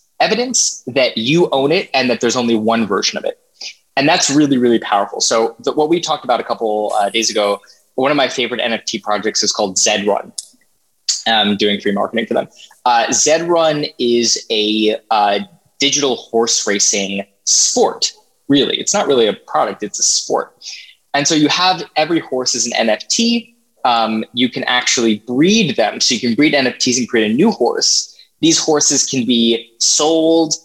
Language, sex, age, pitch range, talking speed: English, male, 20-39, 110-150 Hz, 180 wpm